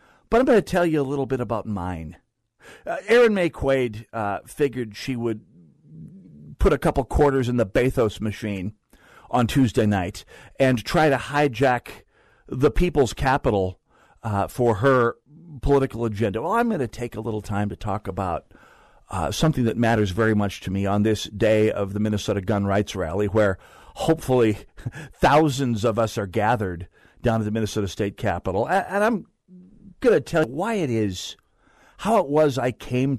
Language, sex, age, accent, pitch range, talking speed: English, male, 50-69, American, 105-145 Hz, 175 wpm